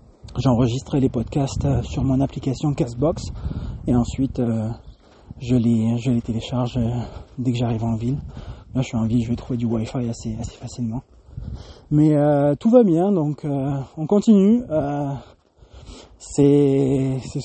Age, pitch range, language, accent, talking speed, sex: 20-39, 125-155 Hz, English, French, 155 wpm, male